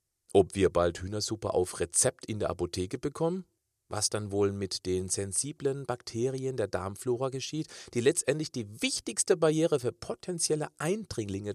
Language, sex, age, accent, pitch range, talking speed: German, male, 40-59, German, 105-150 Hz, 145 wpm